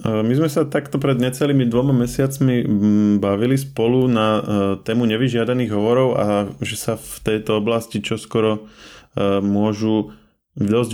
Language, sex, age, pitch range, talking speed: Slovak, male, 20-39, 105-120 Hz, 125 wpm